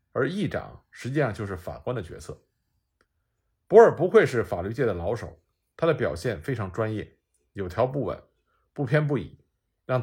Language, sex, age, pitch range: Chinese, male, 50-69, 90-145 Hz